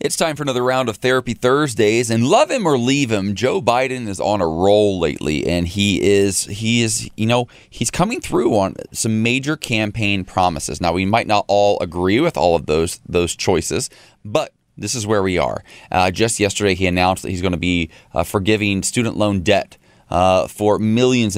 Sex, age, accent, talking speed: male, 30-49, American, 200 wpm